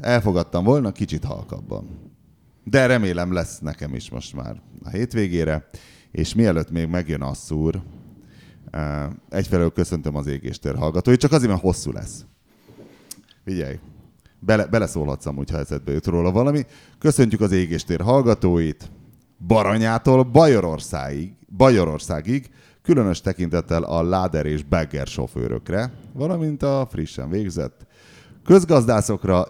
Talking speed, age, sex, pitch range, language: 110 wpm, 30-49, male, 80-115 Hz, Hungarian